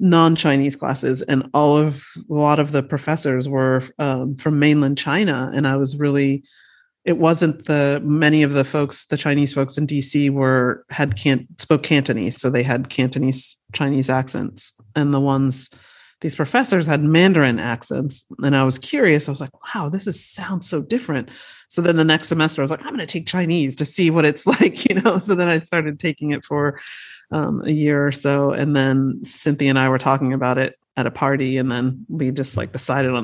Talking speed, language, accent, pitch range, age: 205 wpm, English, American, 135-165 Hz, 30-49